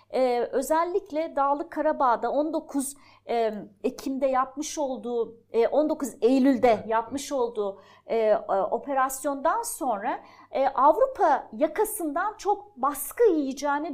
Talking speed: 100 wpm